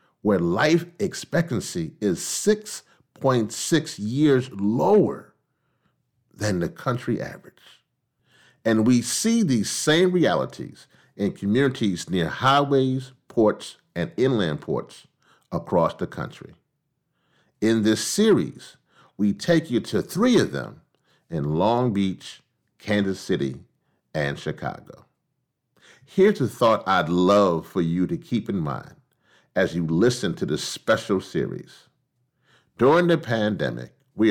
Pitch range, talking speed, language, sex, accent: 105-145 Hz, 115 wpm, English, male, American